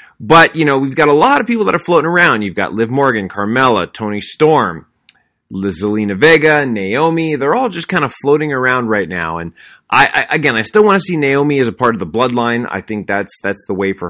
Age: 30-49